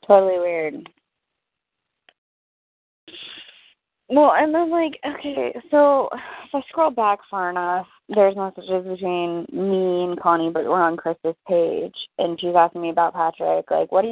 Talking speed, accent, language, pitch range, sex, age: 145 wpm, American, English, 175-205 Hz, female, 20-39